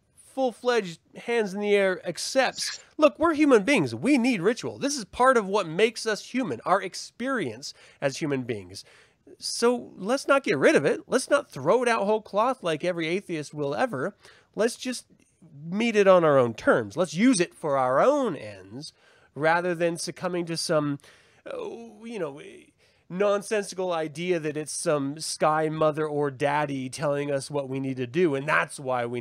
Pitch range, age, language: 155-225 Hz, 30-49, English